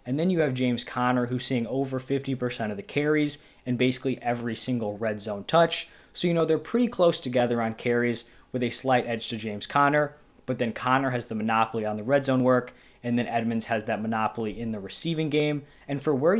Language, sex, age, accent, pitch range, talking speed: English, male, 20-39, American, 120-140 Hz, 220 wpm